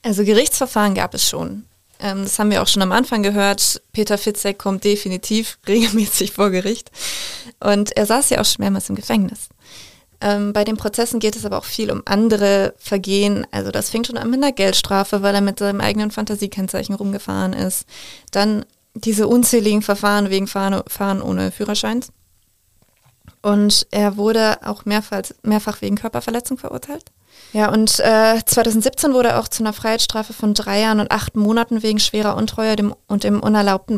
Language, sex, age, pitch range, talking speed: German, female, 20-39, 200-220 Hz, 165 wpm